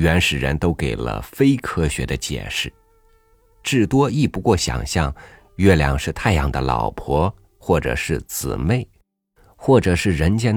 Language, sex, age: Chinese, male, 50-69